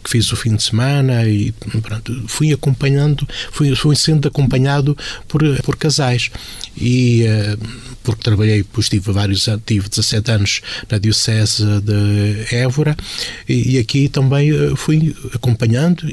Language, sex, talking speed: Portuguese, male, 135 wpm